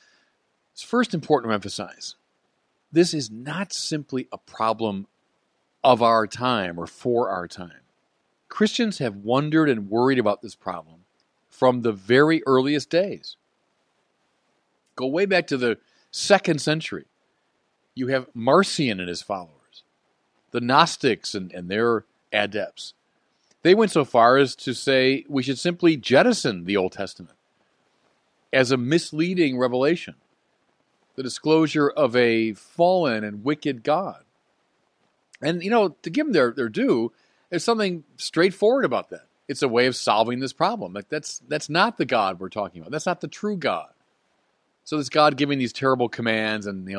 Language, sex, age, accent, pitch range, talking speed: English, male, 40-59, American, 105-155 Hz, 155 wpm